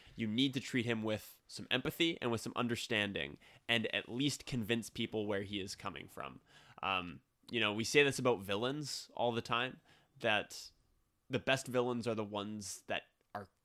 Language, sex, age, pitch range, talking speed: English, male, 20-39, 100-125 Hz, 185 wpm